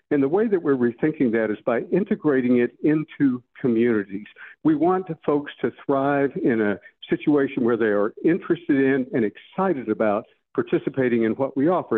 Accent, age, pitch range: American, 60-79, 115-150 Hz